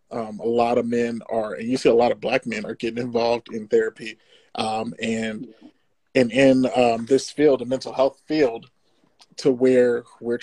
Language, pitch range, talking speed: English, 120-135 Hz, 190 wpm